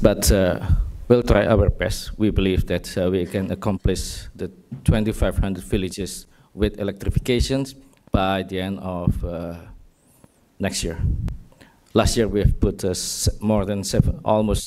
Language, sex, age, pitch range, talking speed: English, male, 50-69, 95-115 Hz, 145 wpm